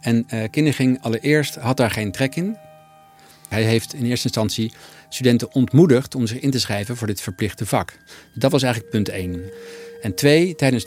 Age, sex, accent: 50-69, male, Dutch